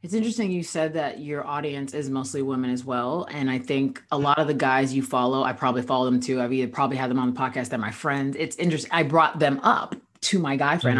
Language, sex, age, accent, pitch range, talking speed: English, female, 30-49, American, 135-170 Hz, 260 wpm